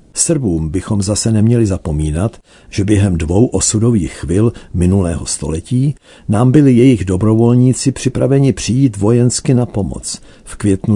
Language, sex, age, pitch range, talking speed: Czech, male, 60-79, 80-115 Hz, 125 wpm